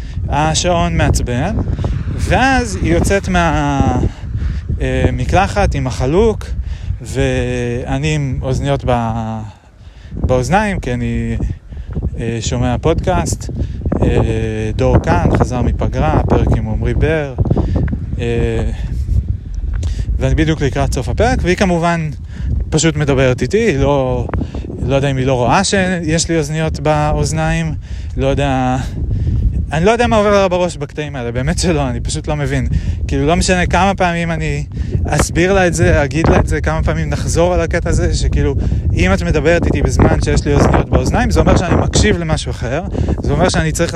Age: 30-49